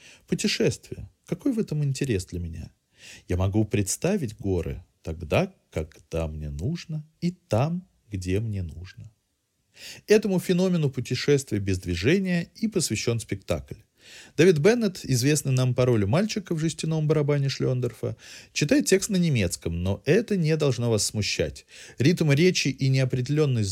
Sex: male